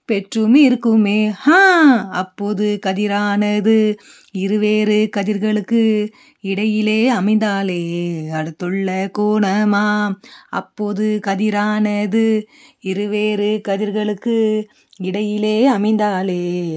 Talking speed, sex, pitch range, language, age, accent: 55 wpm, female, 200-225 Hz, Tamil, 30-49, native